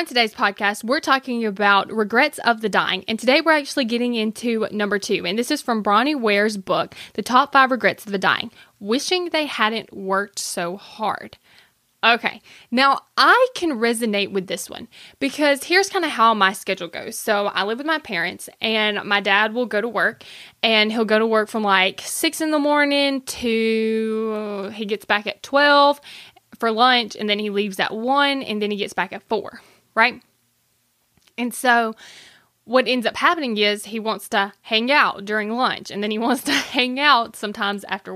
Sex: female